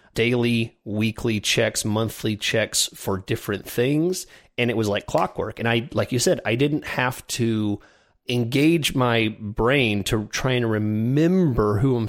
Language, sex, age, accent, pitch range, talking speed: English, male, 30-49, American, 105-125 Hz, 155 wpm